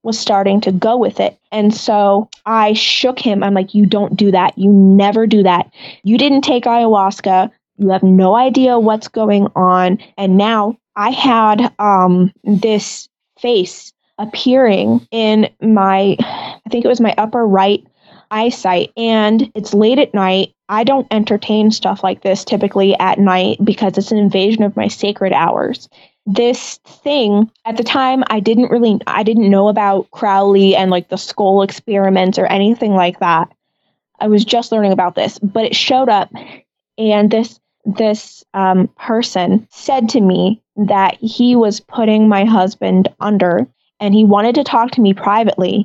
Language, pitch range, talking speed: English, 195-225 Hz, 165 wpm